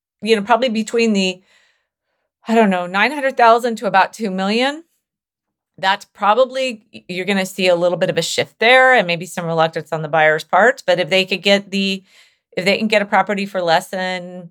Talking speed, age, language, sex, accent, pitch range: 210 wpm, 40-59, English, female, American, 160-200 Hz